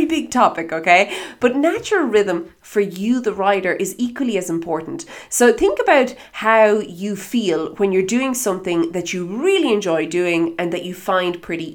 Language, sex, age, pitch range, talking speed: English, female, 30-49, 170-220 Hz, 175 wpm